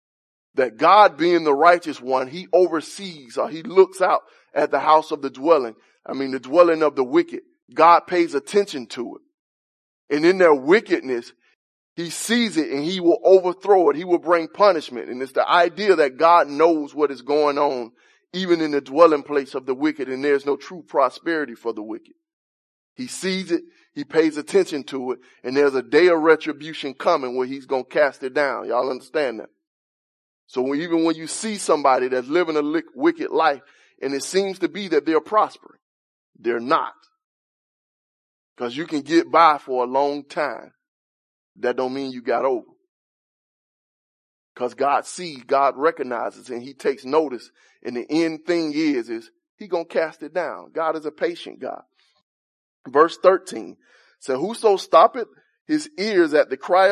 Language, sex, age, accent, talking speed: English, male, 20-39, American, 180 wpm